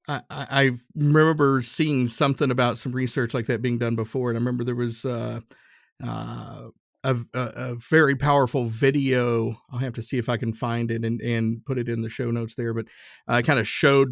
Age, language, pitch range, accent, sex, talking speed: 50-69, English, 115-130 Hz, American, male, 210 wpm